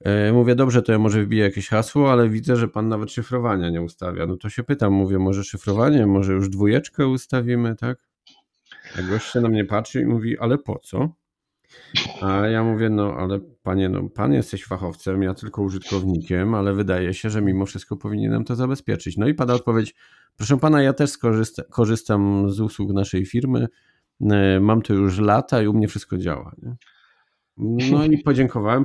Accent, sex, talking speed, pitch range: native, male, 180 wpm, 100-130 Hz